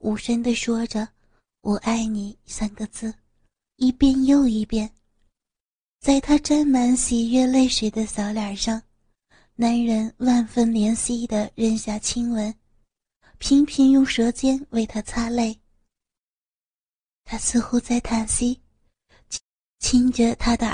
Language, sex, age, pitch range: Chinese, female, 30-49, 215-250 Hz